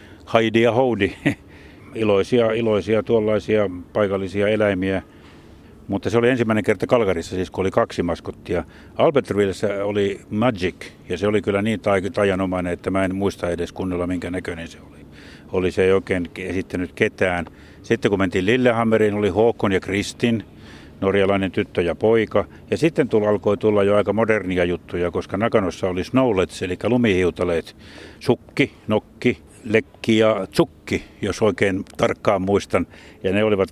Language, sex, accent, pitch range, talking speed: Finnish, male, native, 90-110 Hz, 150 wpm